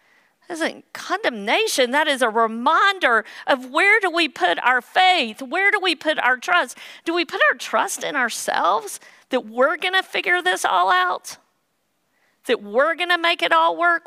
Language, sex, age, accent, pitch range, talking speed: English, female, 50-69, American, 260-345 Hz, 185 wpm